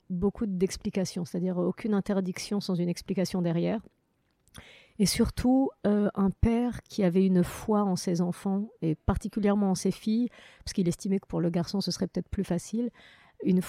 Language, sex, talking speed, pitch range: French, female, 170 wpm, 170-205 Hz